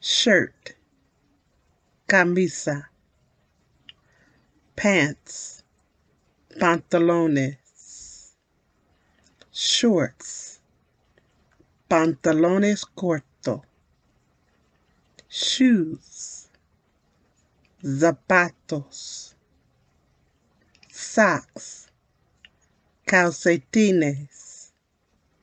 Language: English